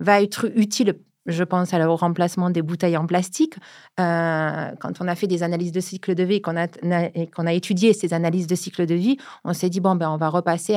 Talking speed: 240 wpm